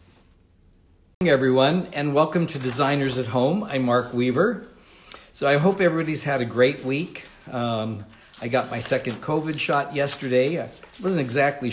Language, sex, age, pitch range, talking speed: English, male, 50-69, 125-170 Hz, 150 wpm